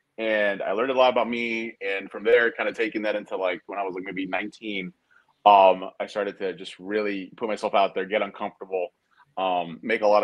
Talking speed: 225 wpm